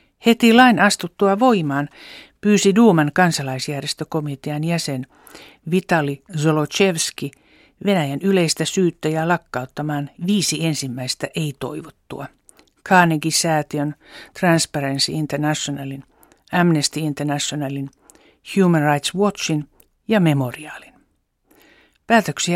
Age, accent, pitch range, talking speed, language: 60-79, native, 140-180 Hz, 75 wpm, Finnish